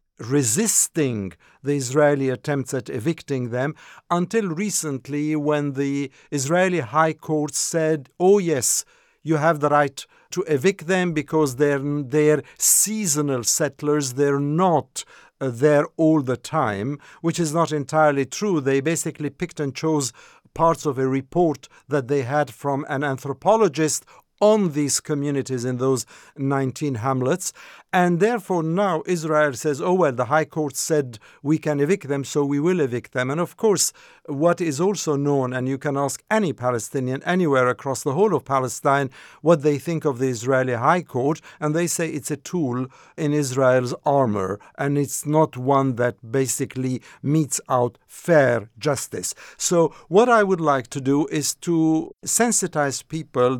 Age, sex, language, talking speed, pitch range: 50-69, male, English, 155 wpm, 135-165 Hz